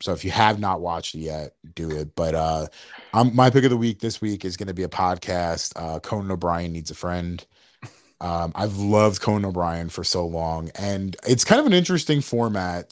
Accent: American